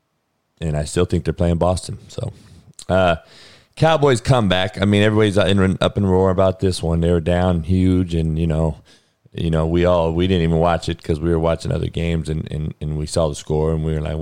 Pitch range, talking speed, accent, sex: 80-105 Hz, 230 wpm, American, male